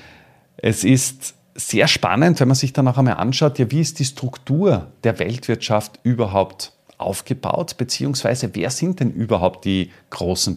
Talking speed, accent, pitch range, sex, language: 155 wpm, Austrian, 105-135 Hz, male, German